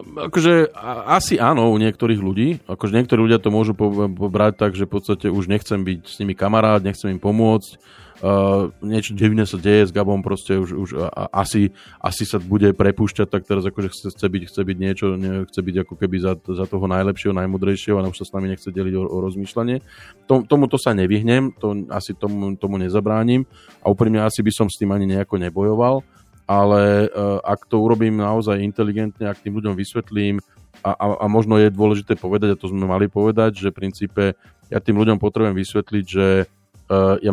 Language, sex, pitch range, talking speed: Slovak, male, 95-105 Hz, 200 wpm